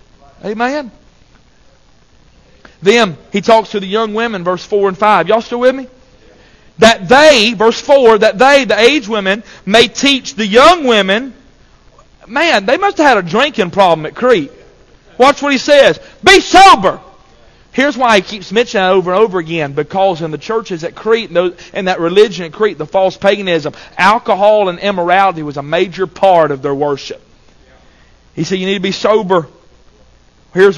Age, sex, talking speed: 40-59, male, 170 wpm